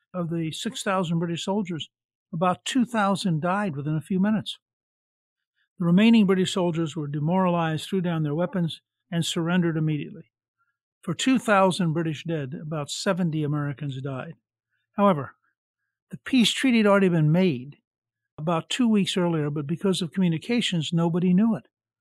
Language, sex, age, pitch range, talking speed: English, male, 60-79, 150-185 Hz, 140 wpm